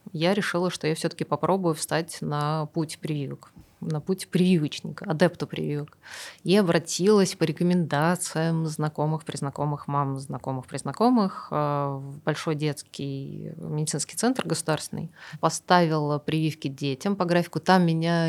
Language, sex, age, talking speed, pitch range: Russian, female, 20-39, 115 wpm, 150-175 Hz